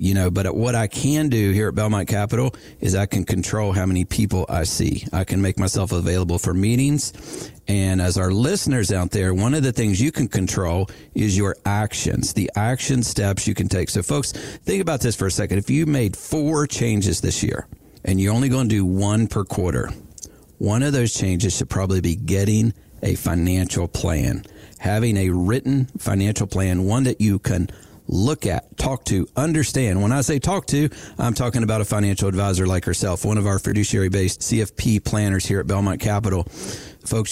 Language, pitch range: English, 95-125 Hz